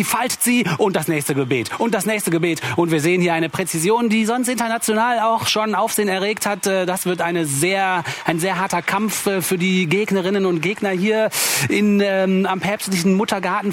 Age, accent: 30-49, German